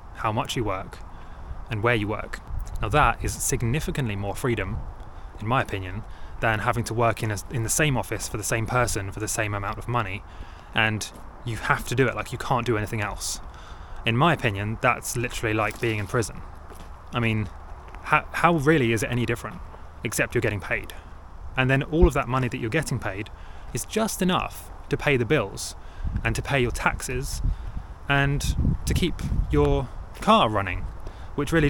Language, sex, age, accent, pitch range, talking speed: English, male, 20-39, British, 90-125 Hz, 190 wpm